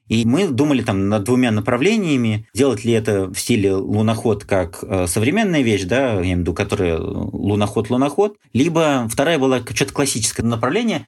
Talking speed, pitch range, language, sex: 155 wpm, 105-130 Hz, Russian, male